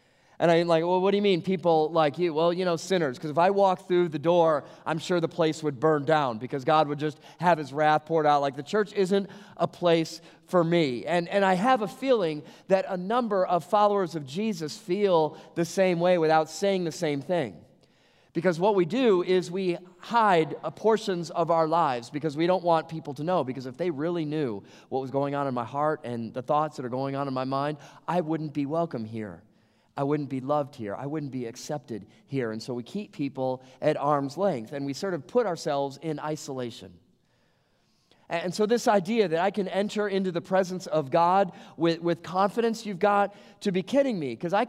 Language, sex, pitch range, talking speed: English, male, 150-190 Hz, 220 wpm